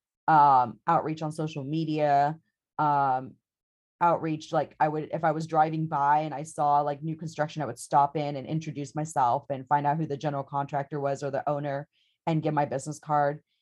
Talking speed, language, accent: 195 wpm, English, American